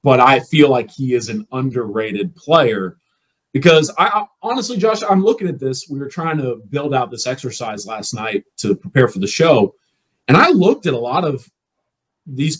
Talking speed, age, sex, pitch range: 195 wpm, 30-49, male, 115-155 Hz